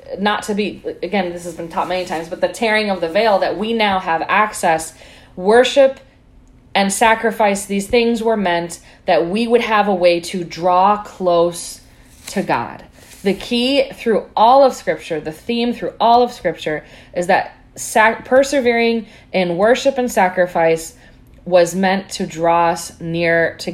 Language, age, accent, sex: English, 20-39, American, female